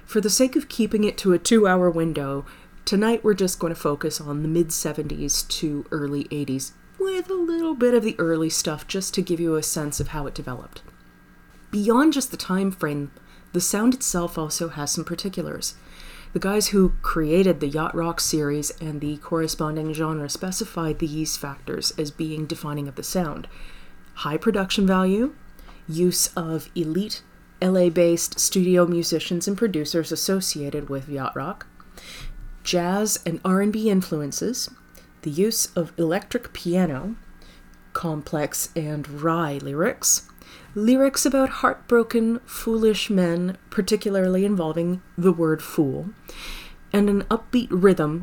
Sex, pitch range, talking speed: female, 155-200 Hz, 145 wpm